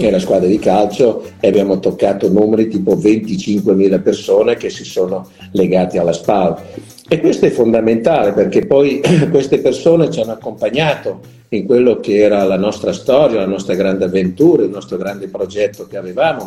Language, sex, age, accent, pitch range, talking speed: Italian, male, 50-69, native, 100-135 Hz, 165 wpm